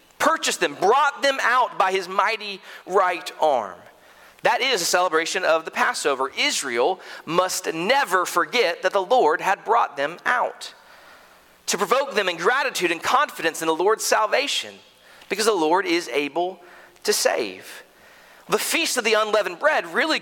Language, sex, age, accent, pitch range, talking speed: English, male, 40-59, American, 165-245 Hz, 155 wpm